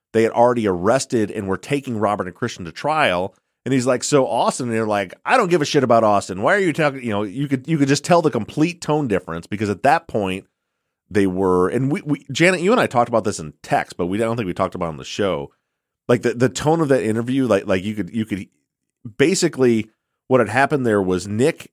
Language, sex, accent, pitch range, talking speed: English, male, American, 95-130 Hz, 255 wpm